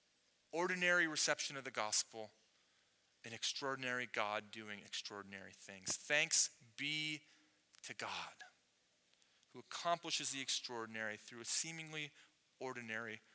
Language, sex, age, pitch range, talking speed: English, male, 30-49, 125-165 Hz, 105 wpm